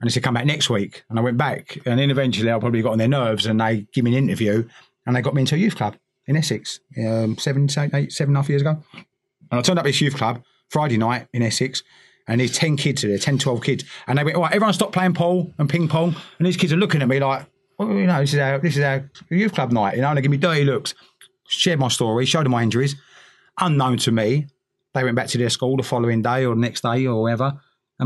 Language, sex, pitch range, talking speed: English, male, 120-150 Hz, 280 wpm